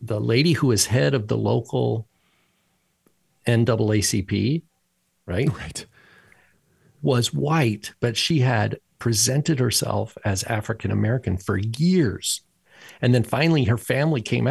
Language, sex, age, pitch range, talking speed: English, male, 50-69, 100-125 Hz, 115 wpm